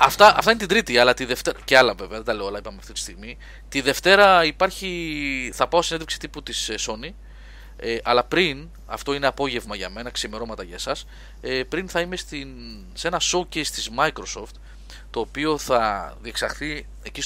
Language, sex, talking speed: Greek, male, 190 wpm